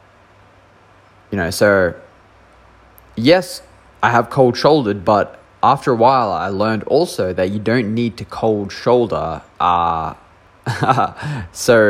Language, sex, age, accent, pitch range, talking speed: English, male, 20-39, Australian, 95-120 Hz, 110 wpm